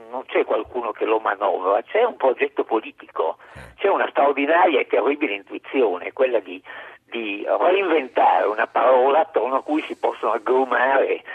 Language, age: Italian, 50-69